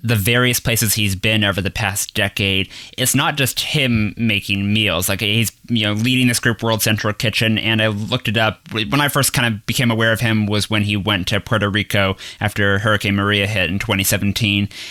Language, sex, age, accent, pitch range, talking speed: English, male, 20-39, American, 100-120 Hz, 210 wpm